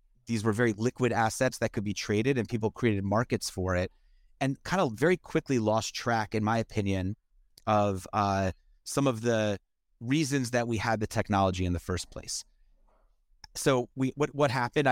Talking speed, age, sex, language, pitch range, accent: 180 wpm, 30-49, male, English, 100-125 Hz, American